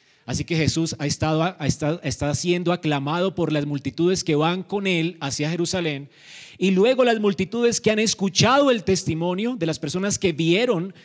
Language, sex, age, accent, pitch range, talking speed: Spanish, male, 30-49, Colombian, 145-185 Hz, 170 wpm